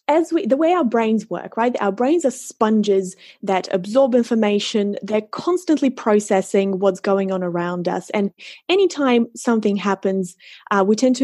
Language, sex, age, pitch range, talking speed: English, female, 20-39, 195-240 Hz, 165 wpm